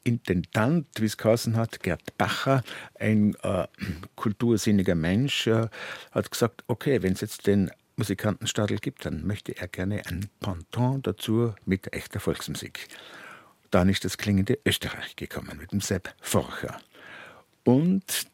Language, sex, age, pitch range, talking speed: German, male, 60-79, 95-120 Hz, 135 wpm